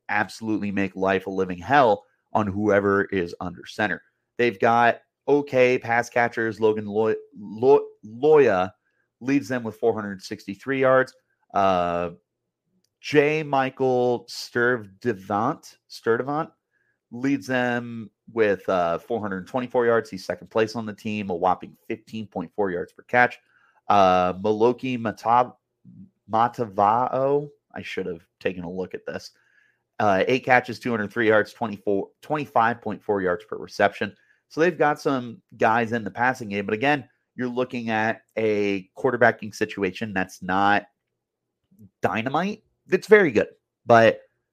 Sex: male